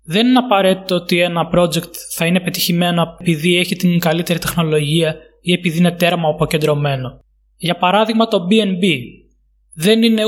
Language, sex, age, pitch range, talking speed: Greek, male, 20-39, 170-205 Hz, 145 wpm